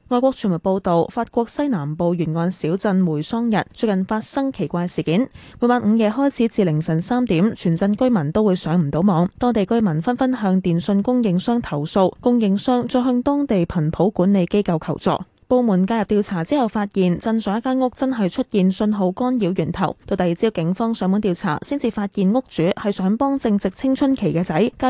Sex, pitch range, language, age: female, 180-230 Hz, Chinese, 10-29